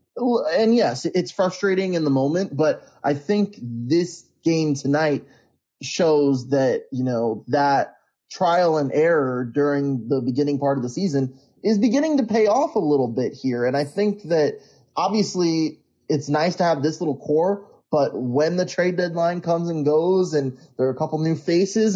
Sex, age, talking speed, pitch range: male, 20-39, 175 wpm, 135-180 Hz